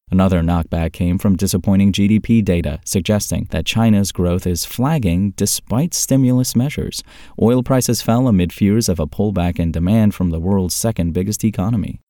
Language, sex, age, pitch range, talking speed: English, male, 30-49, 85-115 Hz, 155 wpm